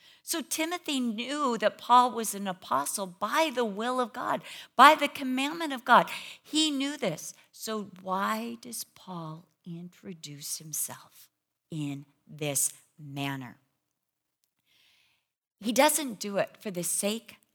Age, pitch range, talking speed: 50-69, 160-225 Hz, 125 wpm